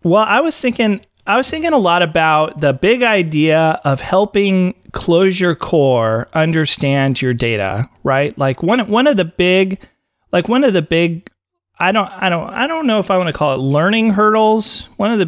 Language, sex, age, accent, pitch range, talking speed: English, male, 30-49, American, 130-185 Hz, 195 wpm